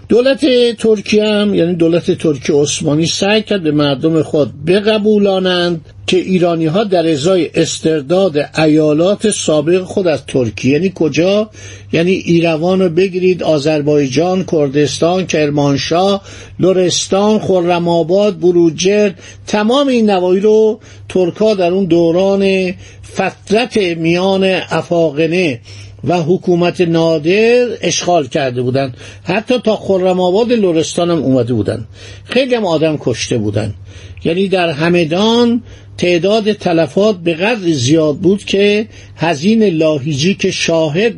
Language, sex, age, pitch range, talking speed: Persian, male, 50-69, 150-195 Hz, 115 wpm